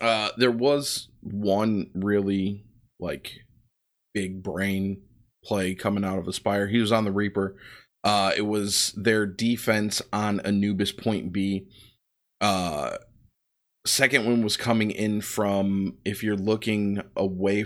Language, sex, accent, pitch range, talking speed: English, male, American, 100-115 Hz, 130 wpm